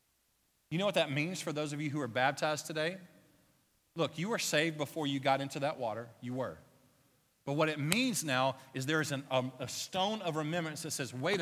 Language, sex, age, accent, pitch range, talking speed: English, male, 40-59, American, 145-185 Hz, 210 wpm